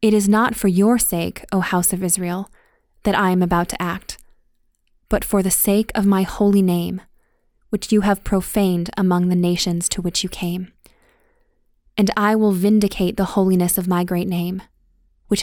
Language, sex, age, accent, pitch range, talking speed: English, female, 20-39, American, 180-205 Hz, 180 wpm